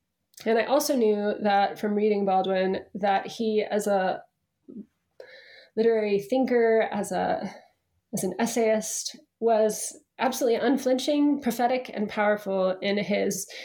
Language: English